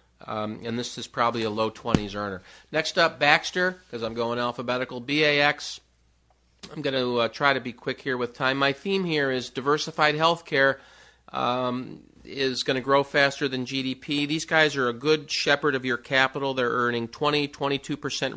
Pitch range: 120-145 Hz